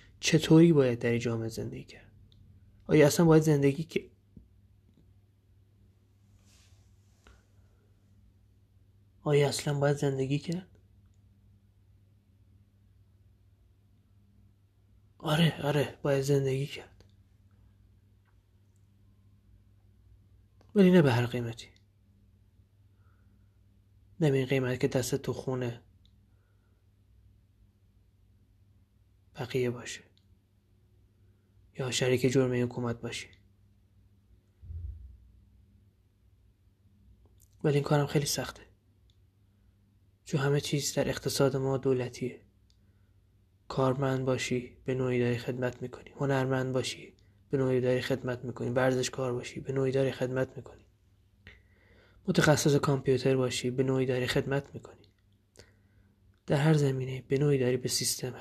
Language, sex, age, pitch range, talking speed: Persian, male, 20-39, 100-130 Hz, 90 wpm